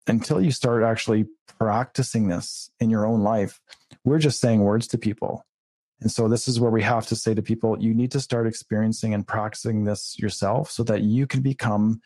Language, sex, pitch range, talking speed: English, male, 105-125 Hz, 205 wpm